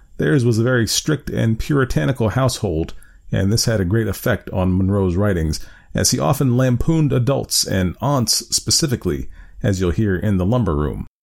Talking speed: 170 wpm